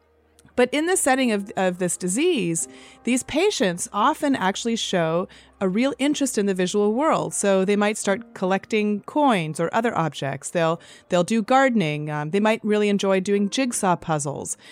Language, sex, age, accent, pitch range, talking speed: English, female, 30-49, American, 175-230 Hz, 165 wpm